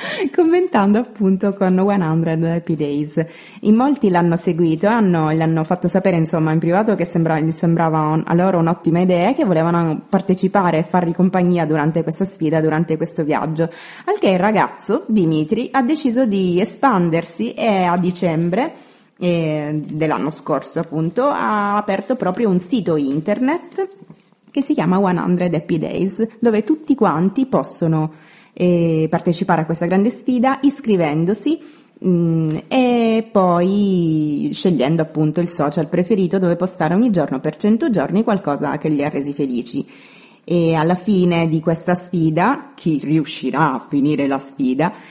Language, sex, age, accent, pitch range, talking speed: Italian, female, 20-39, native, 160-205 Hz, 150 wpm